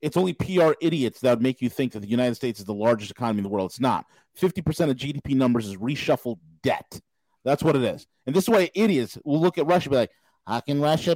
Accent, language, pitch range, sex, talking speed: American, English, 135-190 Hz, male, 260 wpm